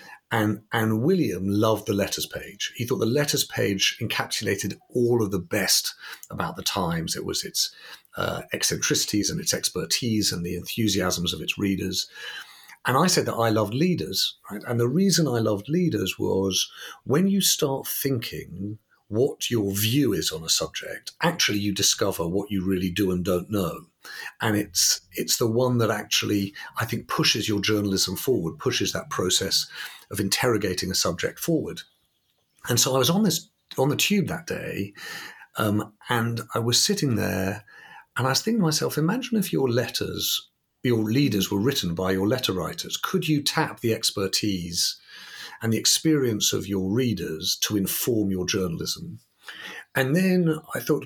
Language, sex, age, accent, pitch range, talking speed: English, male, 50-69, British, 100-145 Hz, 170 wpm